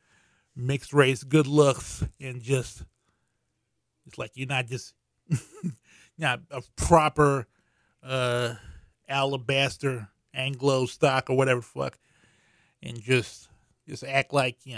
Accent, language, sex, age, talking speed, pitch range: American, English, male, 20-39, 110 wpm, 115-135 Hz